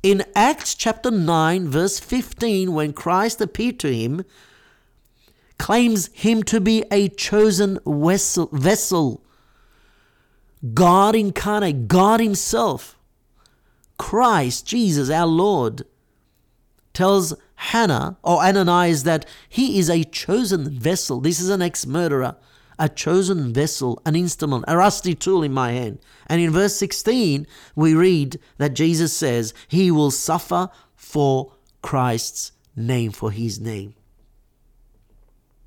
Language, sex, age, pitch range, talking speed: English, male, 50-69, 130-200 Hz, 120 wpm